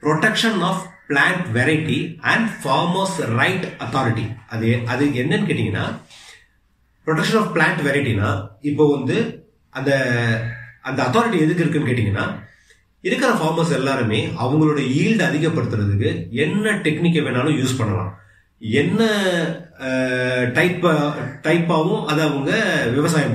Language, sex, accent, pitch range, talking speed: Tamil, male, native, 115-160 Hz, 95 wpm